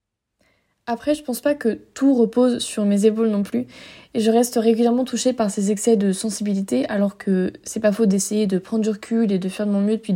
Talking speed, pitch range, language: 230 wpm, 210-240 Hz, French